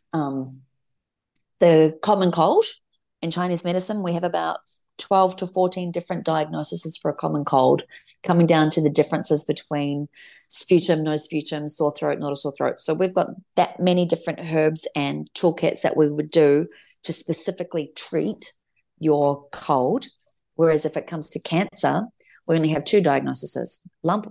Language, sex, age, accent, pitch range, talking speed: English, female, 30-49, Australian, 145-165 Hz, 160 wpm